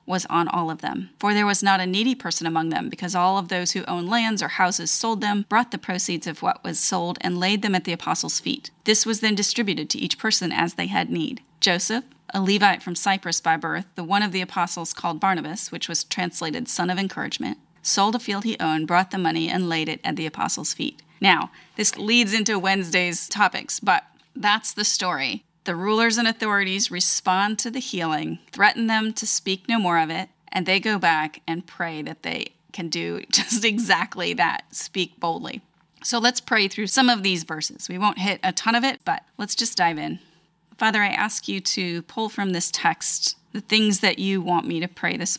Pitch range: 175-215 Hz